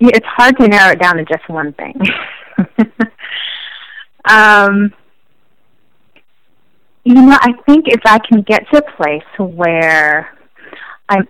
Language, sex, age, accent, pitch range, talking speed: English, female, 30-49, American, 170-225 Hz, 125 wpm